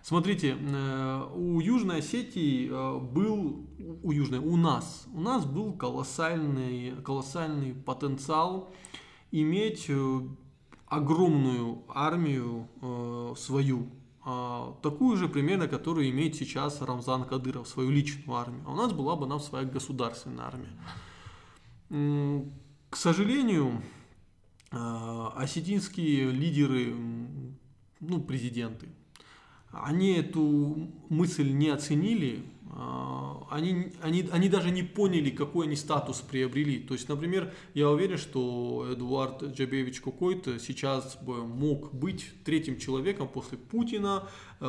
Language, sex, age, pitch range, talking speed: Russian, male, 20-39, 125-160 Hz, 105 wpm